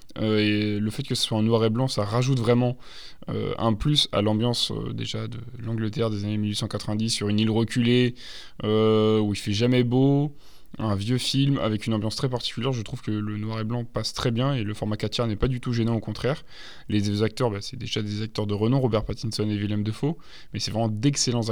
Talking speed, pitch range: 235 wpm, 105-120 Hz